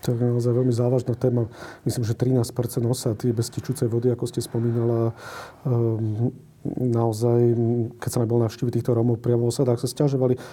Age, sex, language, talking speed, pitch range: 40-59, male, Slovak, 160 wpm, 115-125 Hz